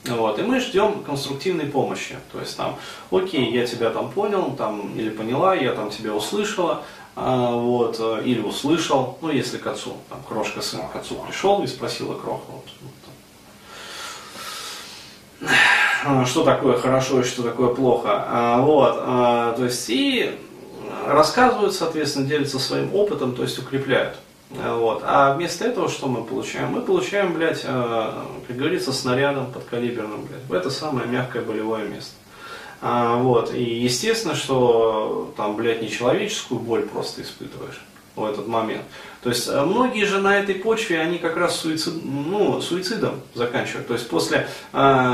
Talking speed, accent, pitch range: 150 wpm, native, 120-170 Hz